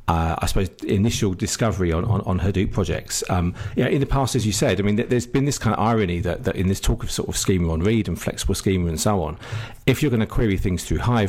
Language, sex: English, male